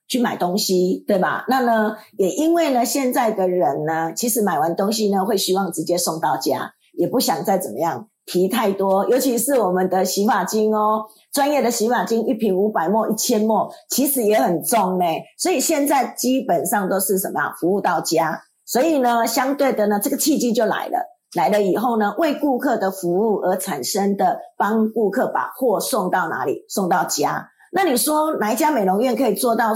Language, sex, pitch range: Chinese, female, 200-275 Hz